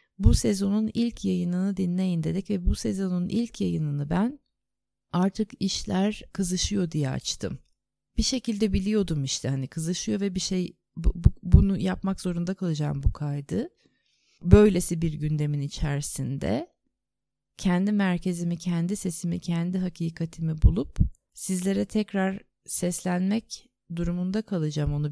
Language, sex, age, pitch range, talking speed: Turkish, female, 30-49, 160-205 Hz, 115 wpm